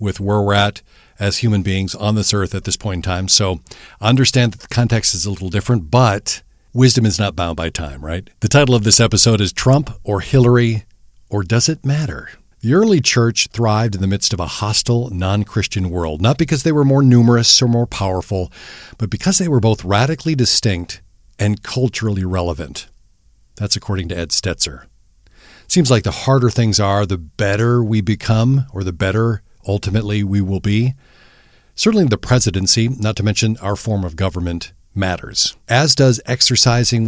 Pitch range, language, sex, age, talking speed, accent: 95-120 Hz, English, male, 50-69, 185 wpm, American